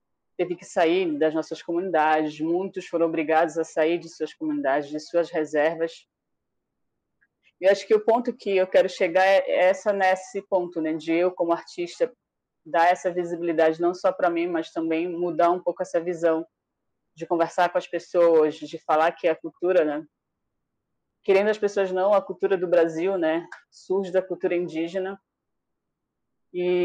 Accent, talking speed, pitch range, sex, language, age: Brazilian, 165 wpm, 160-195 Hz, female, Portuguese, 20-39